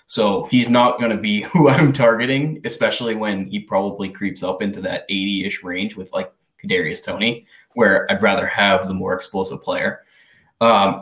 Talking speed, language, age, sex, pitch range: 170 wpm, English, 20-39, male, 100-140 Hz